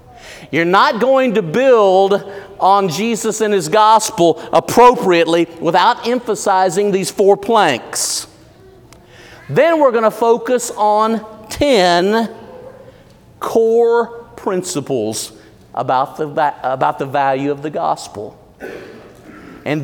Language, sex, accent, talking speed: English, male, American, 100 wpm